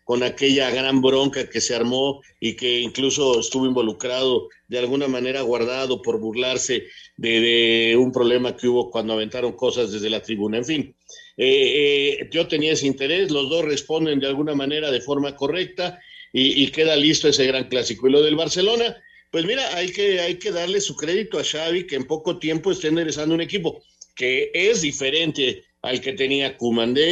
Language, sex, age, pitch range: Spanish, male, 50-69, 130-180 Hz